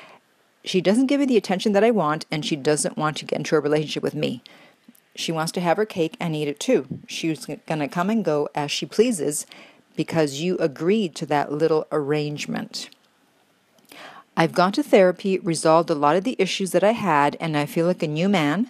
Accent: American